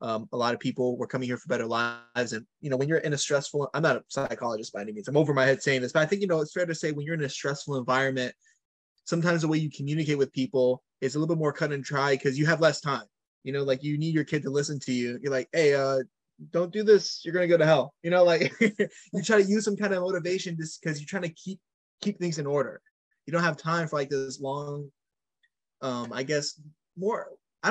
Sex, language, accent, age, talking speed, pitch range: male, English, American, 20-39, 270 wpm, 135-170 Hz